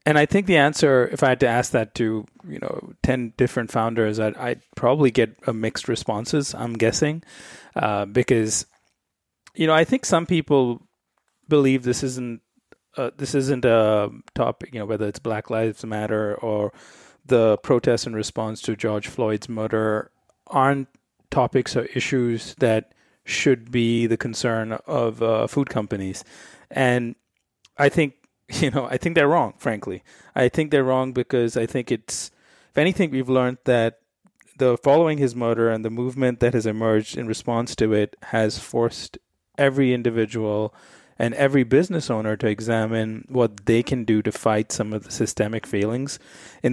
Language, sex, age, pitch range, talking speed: English, male, 30-49, 110-135 Hz, 165 wpm